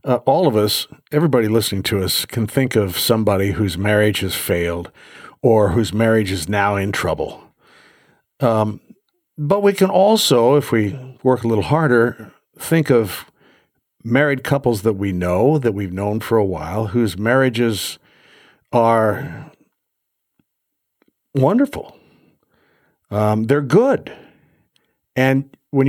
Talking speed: 130 wpm